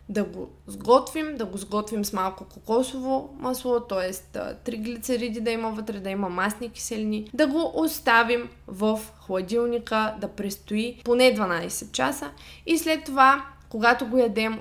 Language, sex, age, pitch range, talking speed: Bulgarian, female, 20-39, 205-260 Hz, 150 wpm